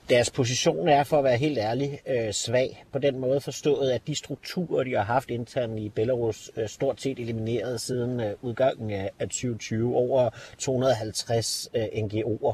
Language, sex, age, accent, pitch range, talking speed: Danish, male, 40-59, native, 105-125 Hz, 155 wpm